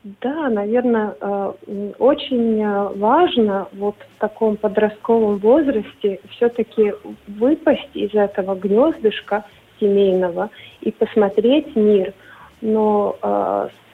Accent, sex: native, female